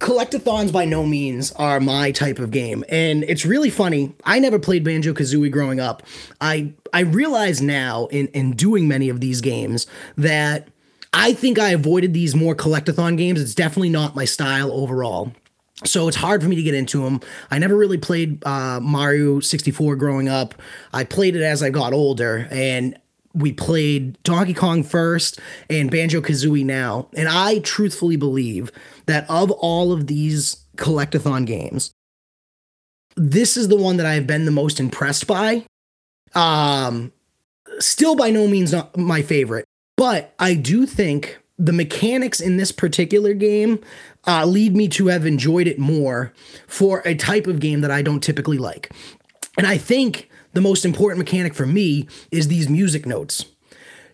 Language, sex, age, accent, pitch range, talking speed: English, male, 20-39, American, 140-185 Hz, 170 wpm